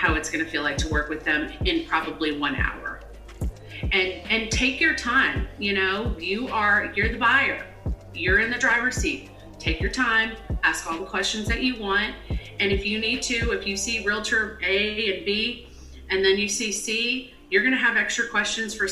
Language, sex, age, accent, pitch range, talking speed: English, female, 30-49, American, 190-230 Hz, 205 wpm